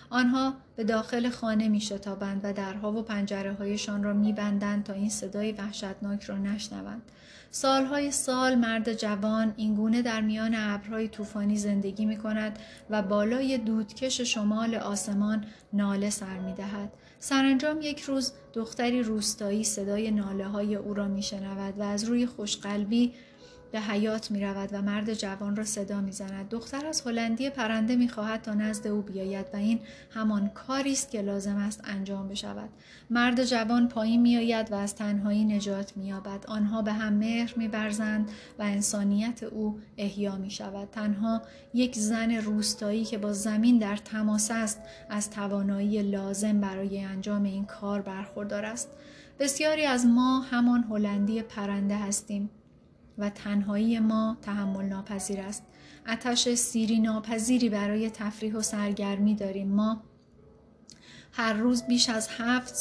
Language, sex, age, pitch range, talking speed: Persian, female, 30-49, 205-225 Hz, 140 wpm